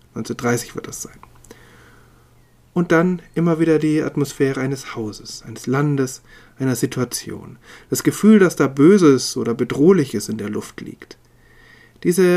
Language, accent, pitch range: German, German, 120-155 Hz